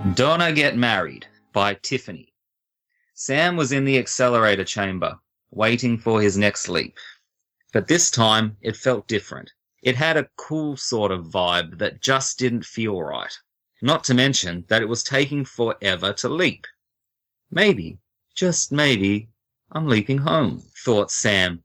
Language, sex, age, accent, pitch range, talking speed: English, male, 30-49, Australian, 105-130 Hz, 145 wpm